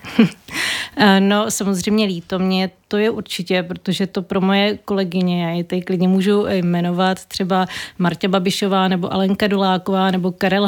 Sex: female